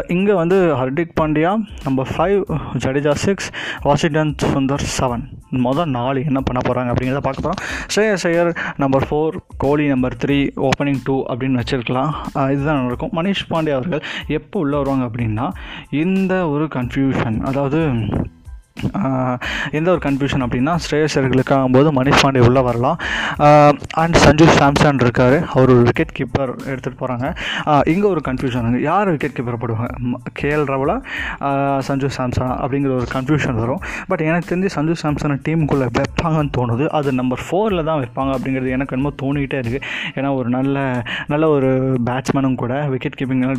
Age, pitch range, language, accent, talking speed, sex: 20-39, 130-155 Hz, Tamil, native, 145 wpm, male